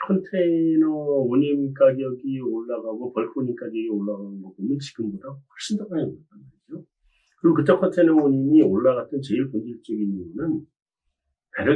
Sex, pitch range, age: male, 105-160 Hz, 40-59